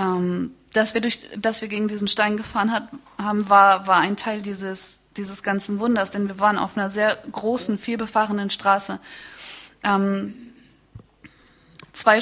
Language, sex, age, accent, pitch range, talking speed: English, female, 20-39, German, 200-230 Hz, 145 wpm